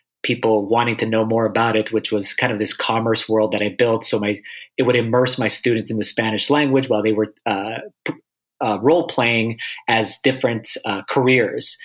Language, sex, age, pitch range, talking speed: English, male, 30-49, 110-135 Hz, 190 wpm